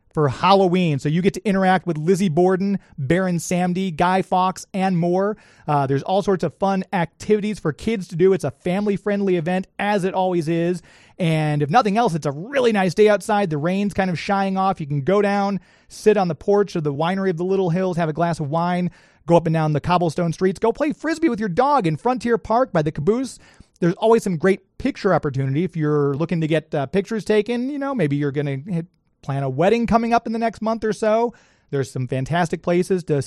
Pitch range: 165-205 Hz